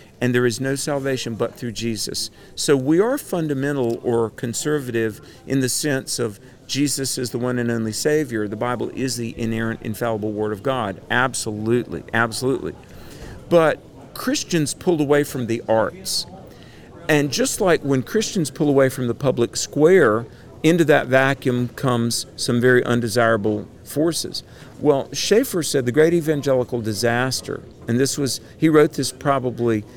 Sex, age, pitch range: male, 50-69, 115-145 Hz